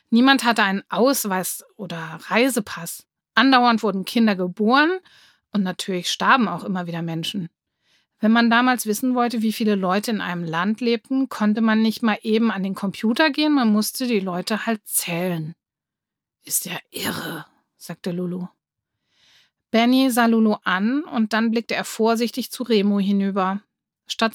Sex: female